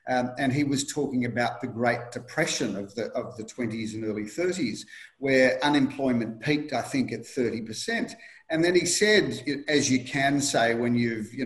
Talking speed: 190 wpm